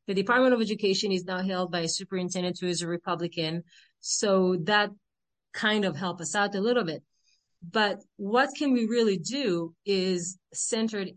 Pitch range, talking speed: 180-225 Hz, 170 wpm